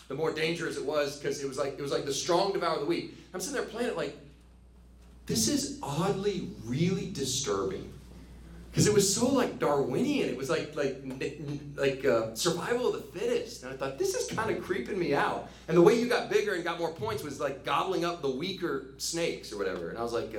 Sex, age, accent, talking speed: male, 40-59, American, 235 wpm